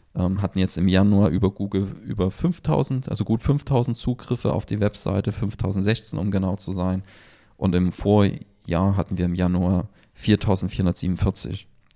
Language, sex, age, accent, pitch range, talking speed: German, male, 30-49, German, 95-110 Hz, 140 wpm